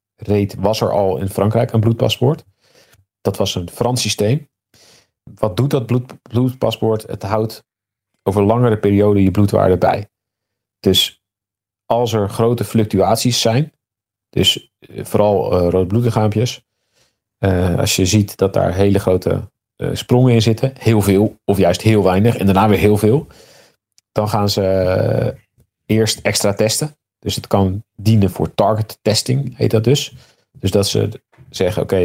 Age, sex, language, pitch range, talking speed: 40-59, male, Dutch, 100-115 Hz, 155 wpm